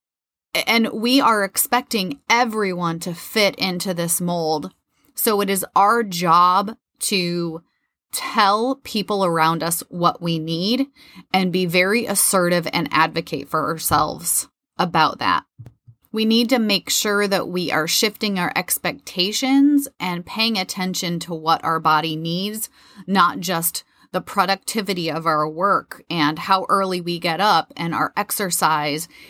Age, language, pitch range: 30-49, English, 170-220 Hz